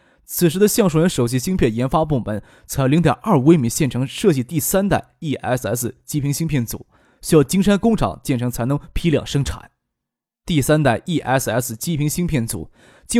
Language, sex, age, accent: Chinese, male, 20-39, native